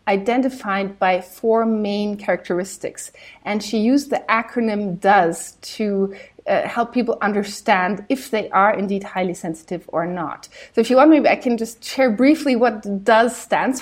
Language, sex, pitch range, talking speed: English, female, 205-260 Hz, 160 wpm